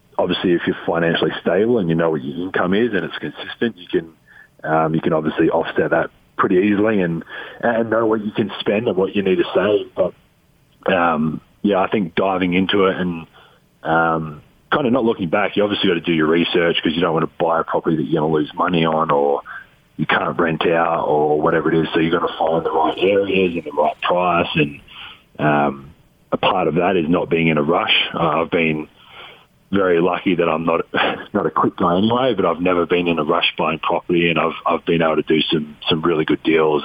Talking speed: 235 wpm